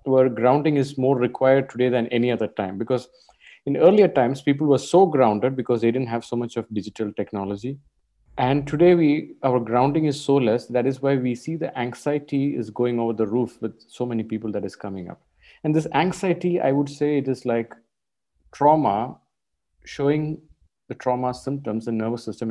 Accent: Indian